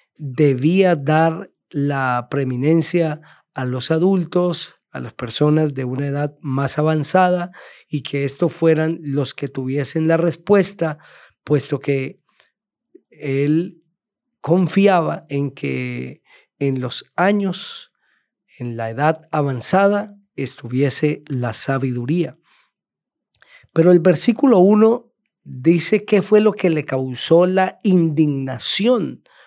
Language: Spanish